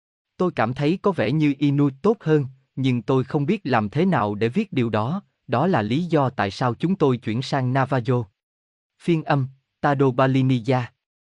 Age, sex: 20-39, male